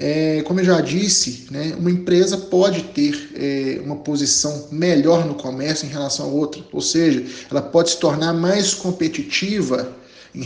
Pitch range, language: 135-175 Hz, Portuguese